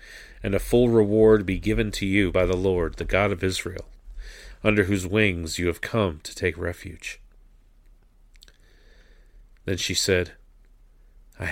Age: 40-59